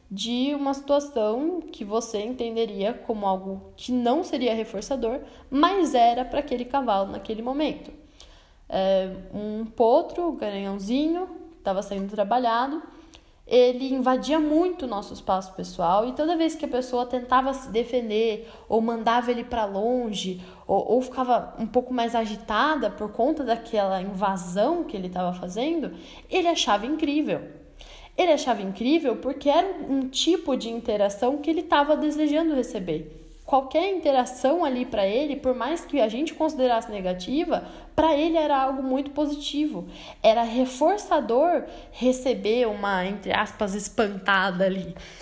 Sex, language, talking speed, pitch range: female, Portuguese, 140 wpm, 215-300 Hz